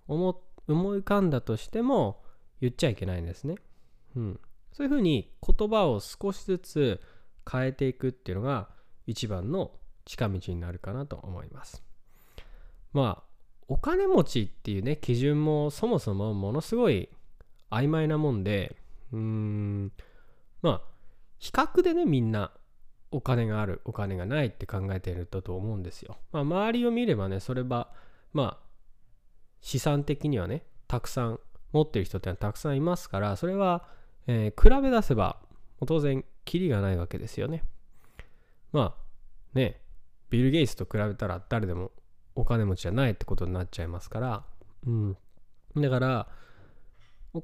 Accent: native